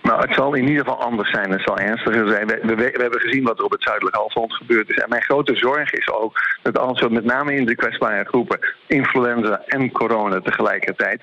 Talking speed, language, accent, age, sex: 235 wpm, Dutch, Dutch, 50-69, male